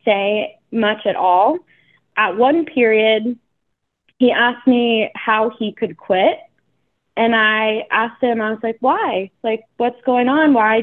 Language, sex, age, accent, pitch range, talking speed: English, female, 20-39, American, 205-240 Hz, 150 wpm